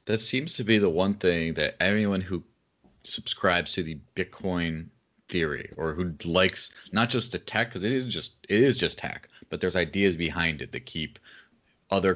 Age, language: 30-49, English